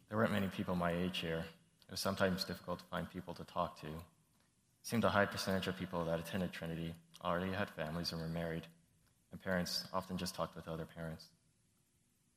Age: 20-39